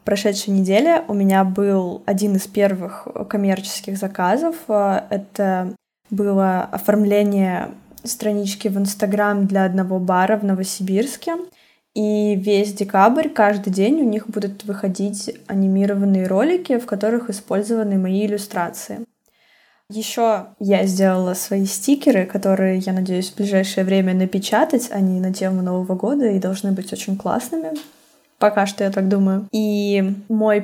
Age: 10-29